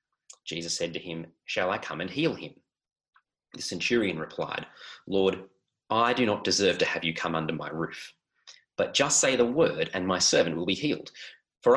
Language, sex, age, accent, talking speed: English, male, 30-49, Australian, 190 wpm